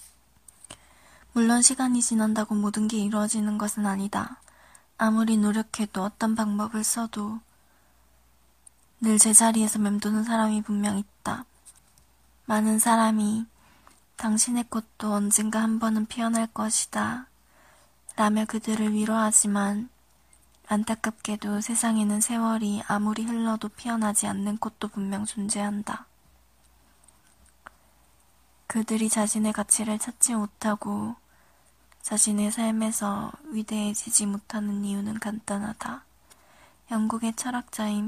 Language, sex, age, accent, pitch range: Korean, female, 20-39, native, 205-225 Hz